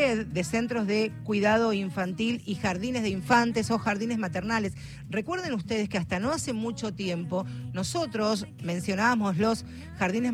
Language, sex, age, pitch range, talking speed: Spanish, female, 40-59, 185-240 Hz, 140 wpm